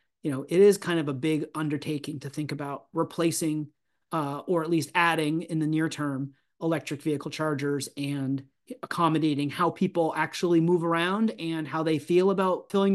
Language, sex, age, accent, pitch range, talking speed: English, male, 30-49, American, 145-170 Hz, 175 wpm